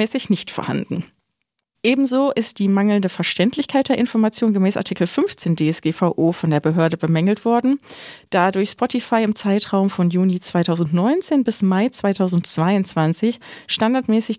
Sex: female